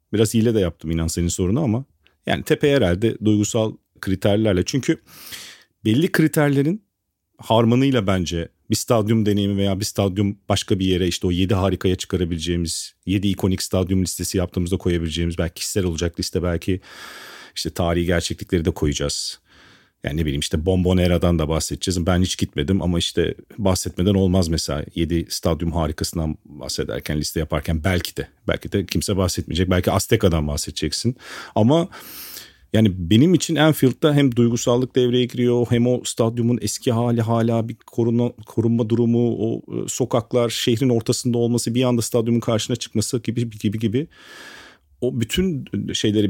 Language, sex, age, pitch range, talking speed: Turkish, male, 40-59, 90-120 Hz, 145 wpm